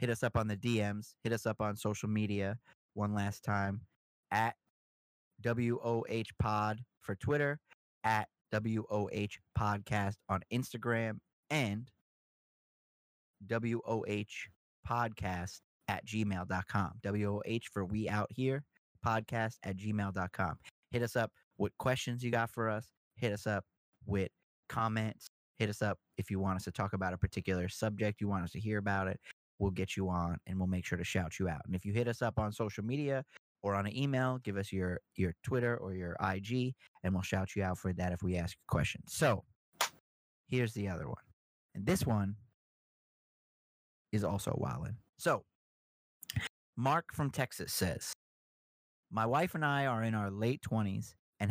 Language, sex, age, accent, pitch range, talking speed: English, male, 30-49, American, 95-115 Hz, 165 wpm